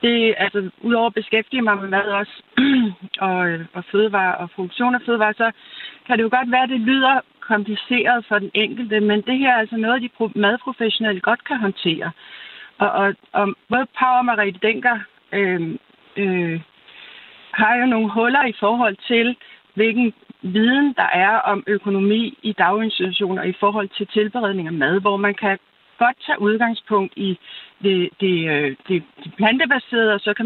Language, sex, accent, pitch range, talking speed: Danish, female, native, 200-245 Hz, 165 wpm